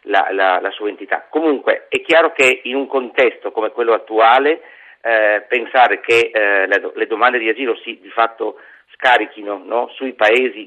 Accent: native